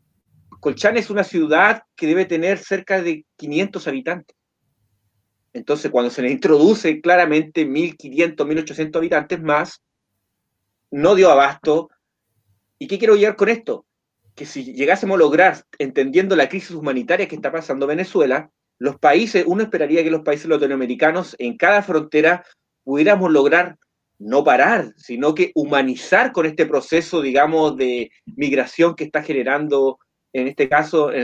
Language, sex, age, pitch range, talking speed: English, male, 30-49, 135-180 Hz, 140 wpm